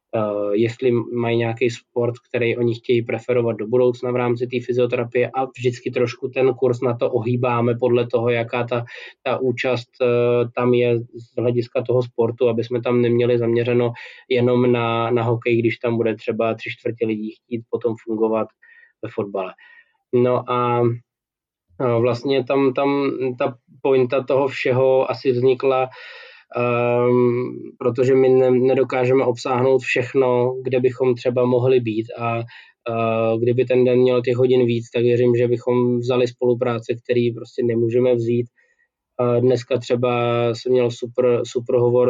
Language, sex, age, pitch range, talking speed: Slovak, male, 20-39, 120-125 Hz, 145 wpm